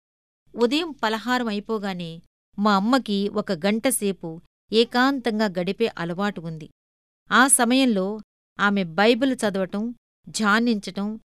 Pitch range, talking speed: 190-250 Hz, 90 wpm